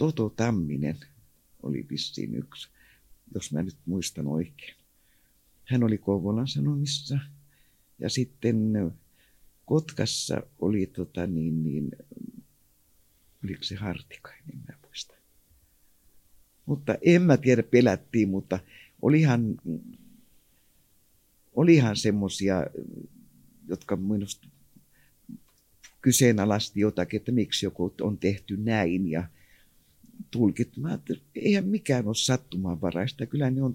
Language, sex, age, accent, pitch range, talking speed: Finnish, male, 50-69, native, 90-125 Hz, 95 wpm